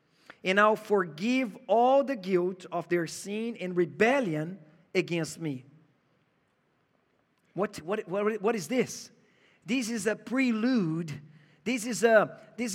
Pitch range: 210-295 Hz